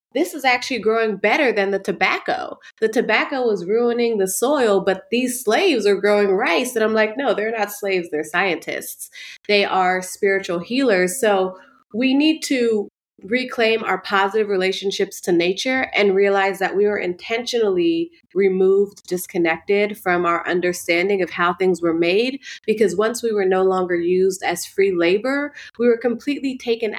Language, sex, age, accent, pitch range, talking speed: English, female, 20-39, American, 180-225 Hz, 160 wpm